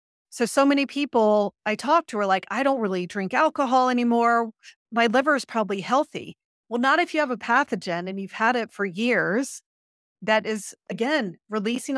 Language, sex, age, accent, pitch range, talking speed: English, female, 30-49, American, 200-245 Hz, 185 wpm